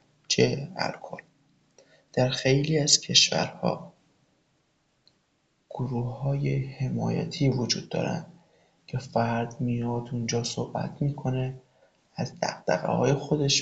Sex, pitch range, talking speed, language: male, 125-150 Hz, 85 wpm, Persian